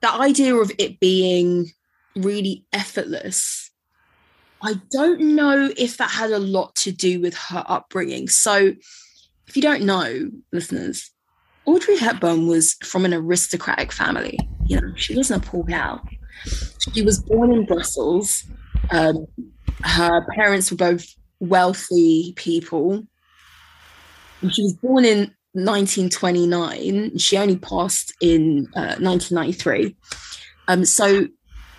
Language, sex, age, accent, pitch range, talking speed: English, female, 20-39, British, 170-215 Hz, 125 wpm